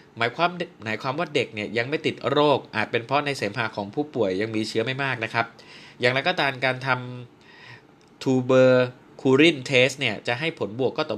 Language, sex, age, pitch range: Thai, male, 20-39, 115-145 Hz